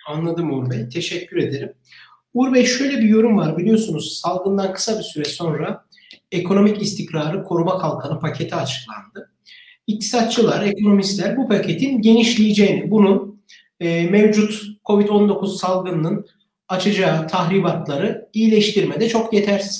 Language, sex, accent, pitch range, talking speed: Turkish, male, native, 185-235 Hz, 115 wpm